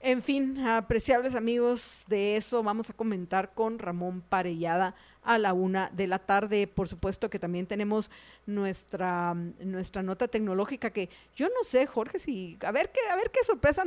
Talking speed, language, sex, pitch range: 175 wpm, Spanish, female, 190-255 Hz